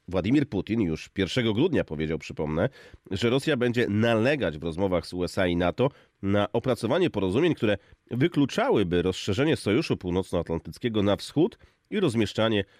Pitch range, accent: 90-125 Hz, native